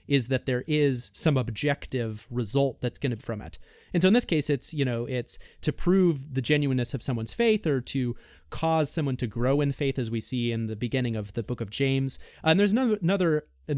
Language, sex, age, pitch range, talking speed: English, male, 30-49, 125-165 Hz, 225 wpm